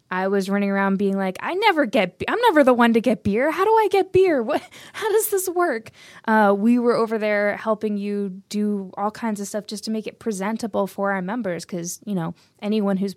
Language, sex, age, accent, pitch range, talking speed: English, female, 20-39, American, 185-225 Hz, 235 wpm